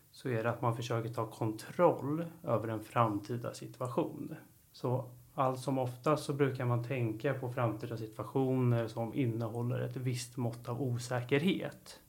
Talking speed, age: 150 wpm, 30-49